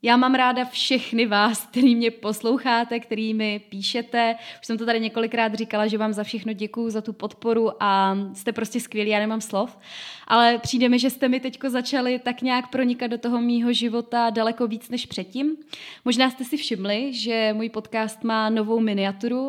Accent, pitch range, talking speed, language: native, 205-240 Hz, 185 wpm, Czech